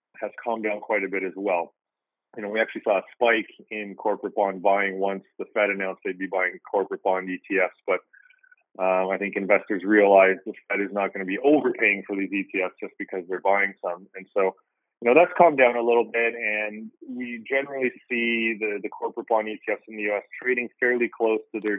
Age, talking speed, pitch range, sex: 30-49, 215 wpm, 100-120 Hz, male